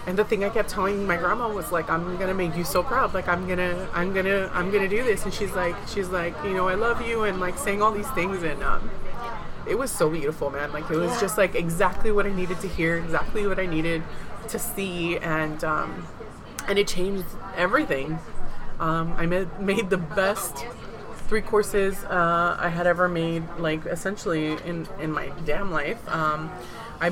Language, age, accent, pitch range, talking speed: English, 30-49, American, 160-195 Hz, 210 wpm